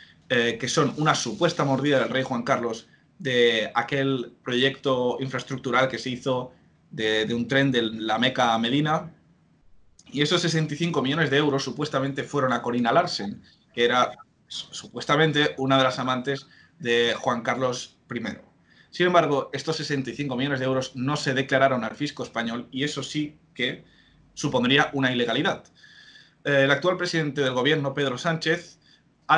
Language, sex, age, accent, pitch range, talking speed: Spanish, male, 20-39, Spanish, 125-150 Hz, 155 wpm